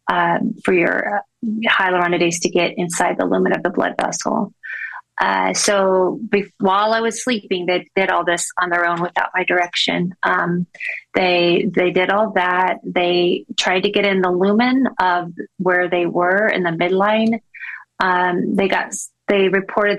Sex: female